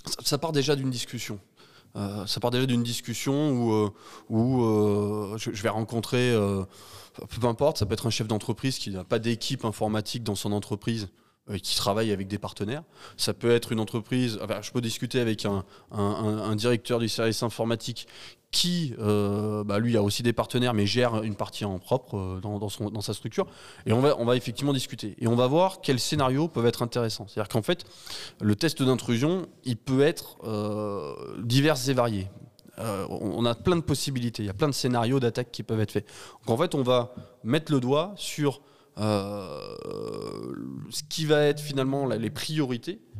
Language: French